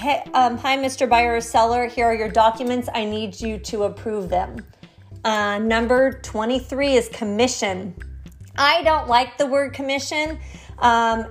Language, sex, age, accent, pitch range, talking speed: English, female, 30-49, American, 220-265 Hz, 150 wpm